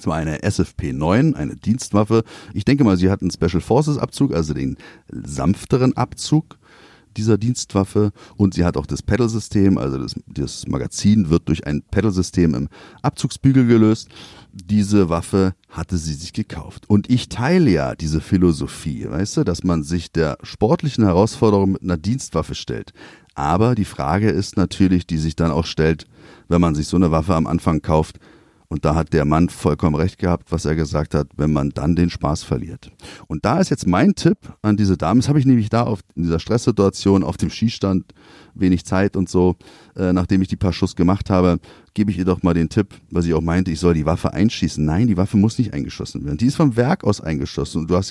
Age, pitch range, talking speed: 40-59, 85-110 Hz, 205 wpm